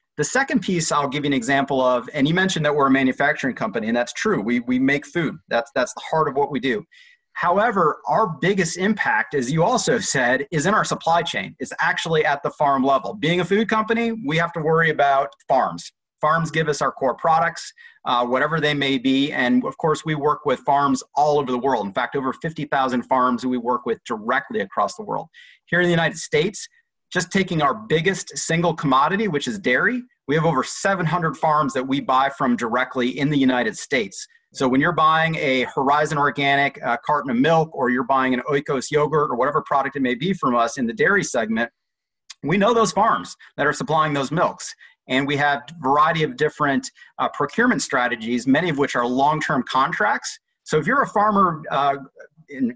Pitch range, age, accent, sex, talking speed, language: 135-195 Hz, 30-49, American, male, 210 wpm, English